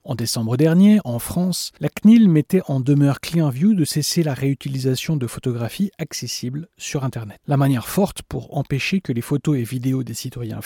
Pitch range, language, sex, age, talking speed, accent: 125-160 Hz, French, male, 40-59, 180 wpm, French